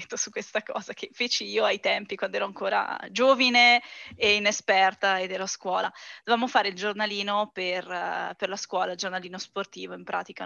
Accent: native